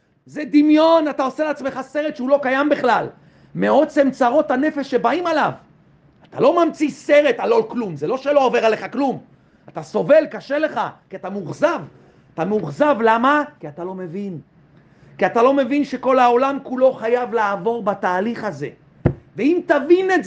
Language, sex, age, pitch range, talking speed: Hebrew, male, 40-59, 180-285 Hz, 165 wpm